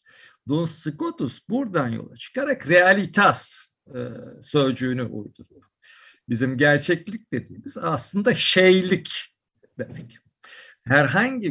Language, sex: Turkish, male